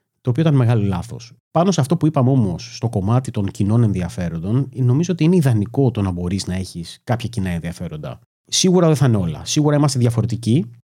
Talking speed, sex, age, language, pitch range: 200 wpm, male, 30-49, Greek, 95-130 Hz